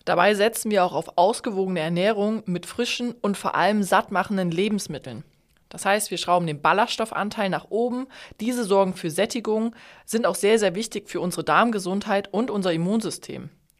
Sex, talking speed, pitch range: female, 160 wpm, 180-220 Hz